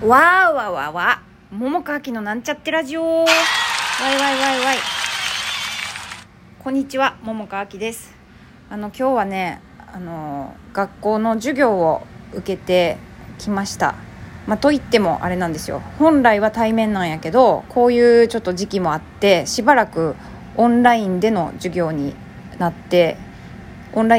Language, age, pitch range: Japanese, 20-39, 175-240 Hz